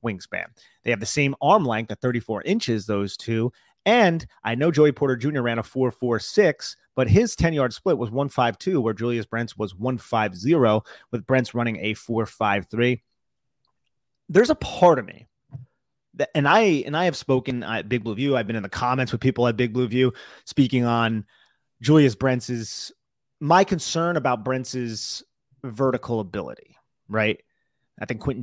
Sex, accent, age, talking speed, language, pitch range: male, American, 30-49, 165 wpm, English, 115-140 Hz